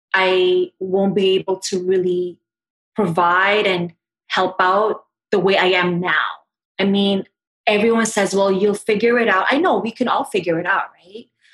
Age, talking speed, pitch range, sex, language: 20-39, 170 wpm, 190-240 Hz, female, English